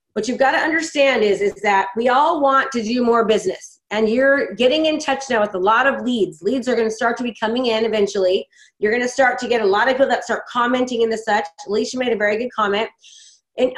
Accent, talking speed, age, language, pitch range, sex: American, 255 wpm, 30-49, English, 210-270 Hz, female